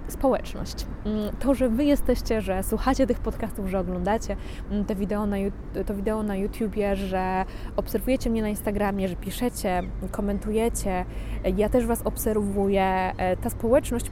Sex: female